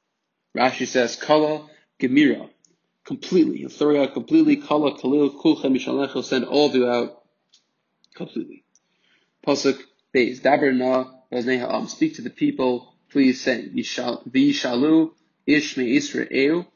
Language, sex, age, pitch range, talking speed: English, male, 20-39, 125-155 Hz, 115 wpm